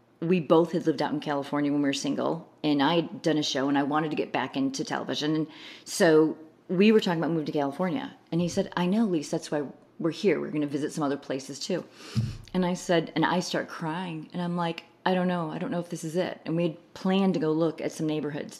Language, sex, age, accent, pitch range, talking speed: English, female, 30-49, American, 150-185 Hz, 265 wpm